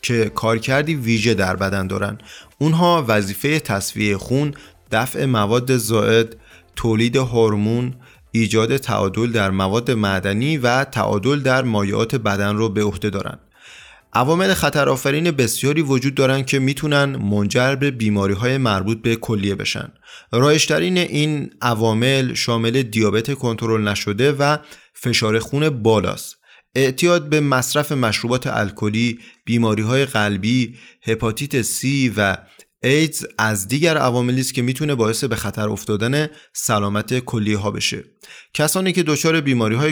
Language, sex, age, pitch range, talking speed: Persian, male, 30-49, 105-140 Hz, 125 wpm